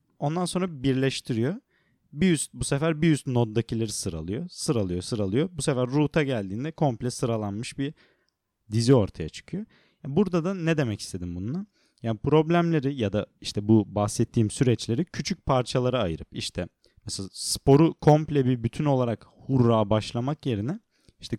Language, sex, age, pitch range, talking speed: Turkish, male, 30-49, 100-140 Hz, 150 wpm